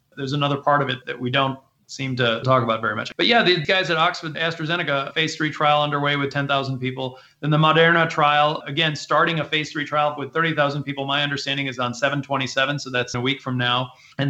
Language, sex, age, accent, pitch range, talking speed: English, male, 30-49, American, 135-165 Hz, 220 wpm